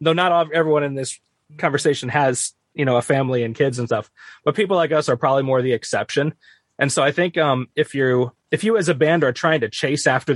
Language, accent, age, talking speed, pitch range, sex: English, American, 20-39, 245 wpm, 120-150 Hz, male